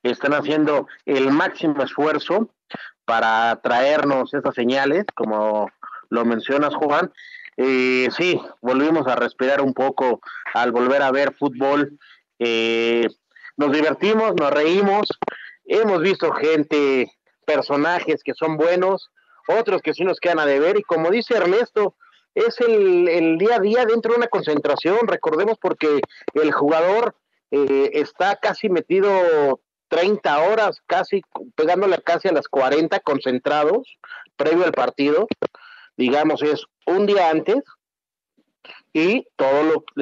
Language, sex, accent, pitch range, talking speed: Spanish, male, Mexican, 135-185 Hz, 125 wpm